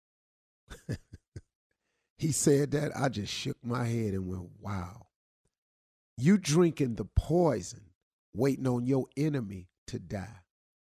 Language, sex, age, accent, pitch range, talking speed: English, male, 50-69, American, 120-185 Hz, 115 wpm